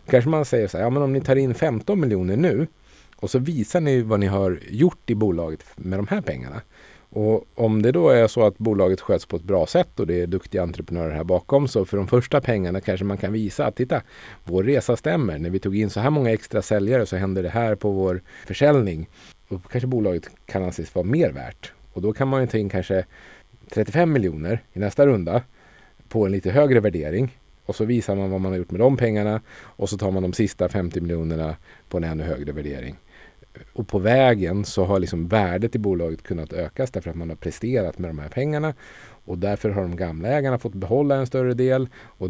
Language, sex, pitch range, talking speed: Swedish, male, 90-125 Hz, 225 wpm